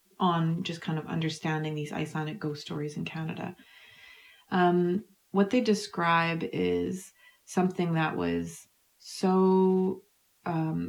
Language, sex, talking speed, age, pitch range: English, female, 115 wpm, 30-49, 160-195 Hz